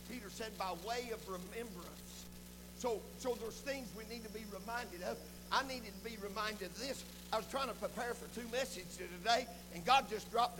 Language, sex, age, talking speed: English, male, 60-79, 205 wpm